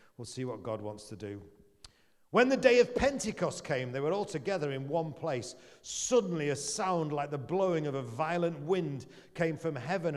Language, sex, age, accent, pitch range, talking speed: English, male, 40-59, British, 150-190 Hz, 195 wpm